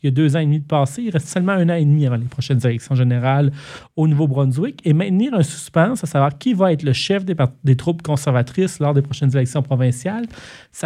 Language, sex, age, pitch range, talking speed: French, male, 40-59, 135-170 Hz, 250 wpm